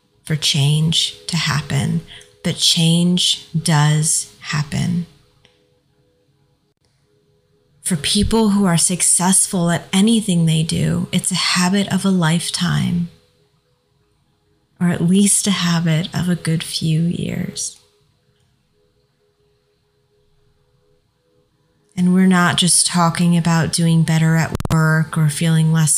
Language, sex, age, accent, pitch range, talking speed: English, female, 20-39, American, 140-175 Hz, 105 wpm